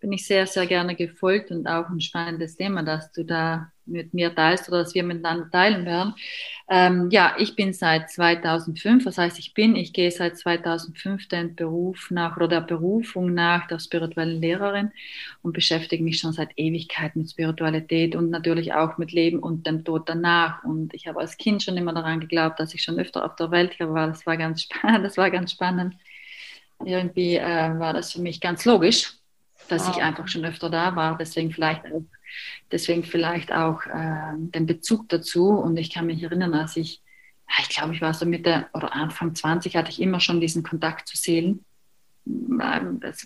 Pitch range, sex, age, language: 165-180 Hz, female, 30-49, German